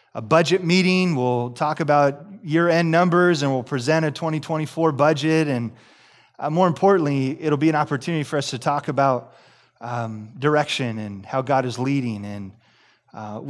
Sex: male